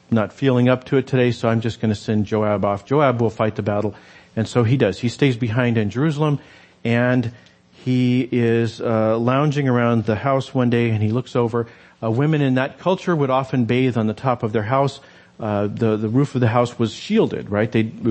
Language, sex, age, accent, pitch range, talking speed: English, male, 40-59, American, 105-125 Hz, 220 wpm